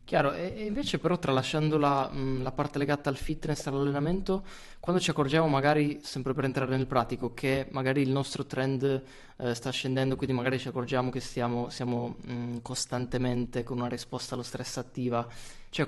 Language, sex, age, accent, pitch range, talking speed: Italian, male, 20-39, native, 125-145 Hz, 165 wpm